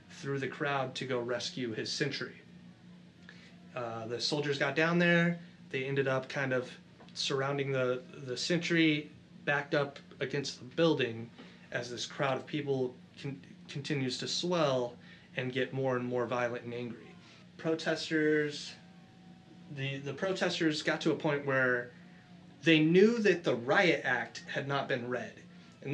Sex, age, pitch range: male, 30-49, 130-160 Hz